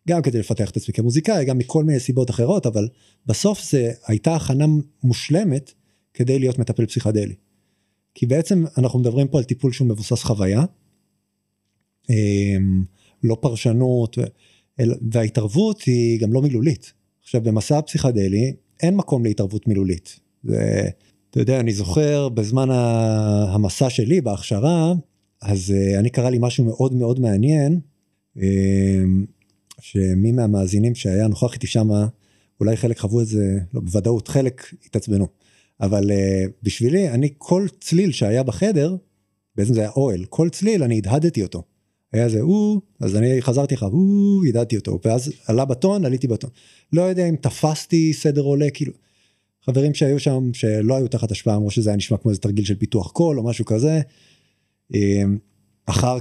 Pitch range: 105-135 Hz